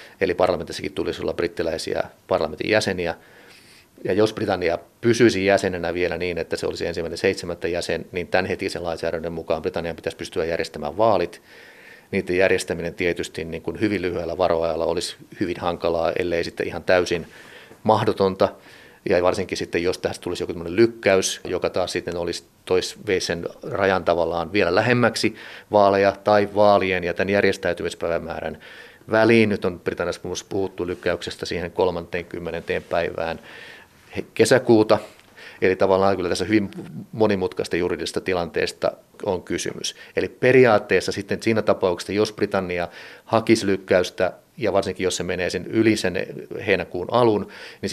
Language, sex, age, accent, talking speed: Finnish, male, 30-49, native, 140 wpm